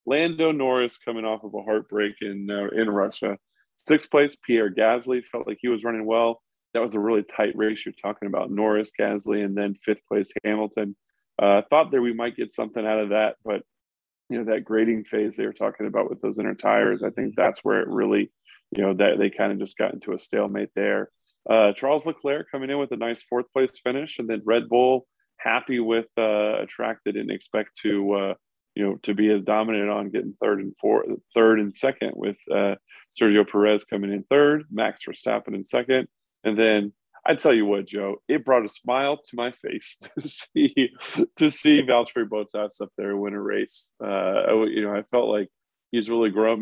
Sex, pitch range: male, 105-125 Hz